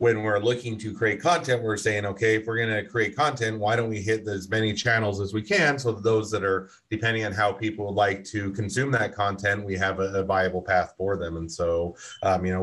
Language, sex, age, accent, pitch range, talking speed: English, male, 30-49, American, 95-110 Hz, 240 wpm